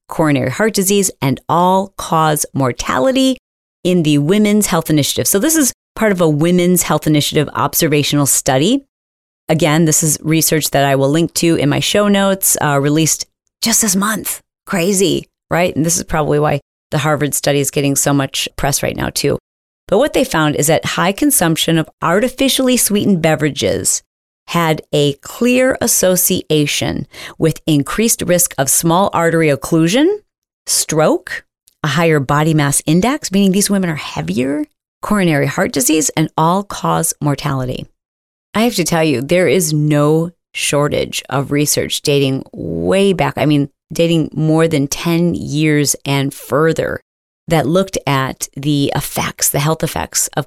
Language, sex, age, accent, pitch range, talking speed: English, female, 40-59, American, 145-180 Hz, 155 wpm